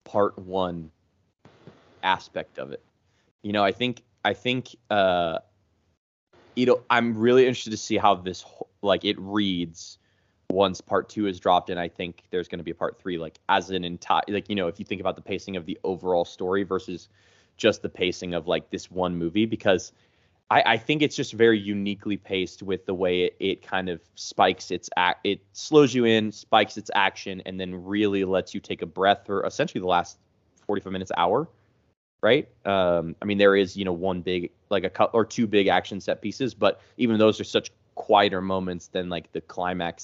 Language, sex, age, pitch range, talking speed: English, male, 20-39, 90-105 Hz, 205 wpm